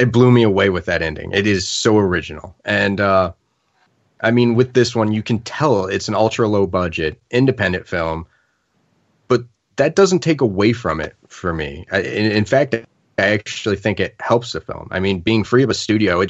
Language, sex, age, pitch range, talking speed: English, male, 30-49, 100-125 Hz, 205 wpm